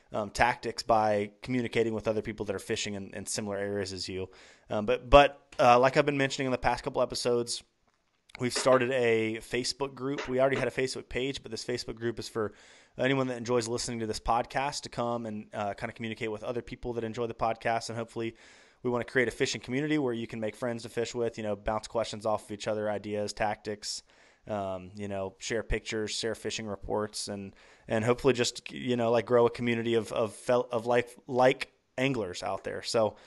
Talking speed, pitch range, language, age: 220 wpm, 110-125 Hz, English, 20-39